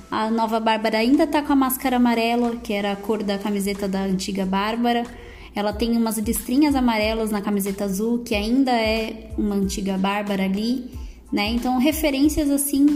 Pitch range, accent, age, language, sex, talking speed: 220-285 Hz, Brazilian, 20-39, Portuguese, female, 170 wpm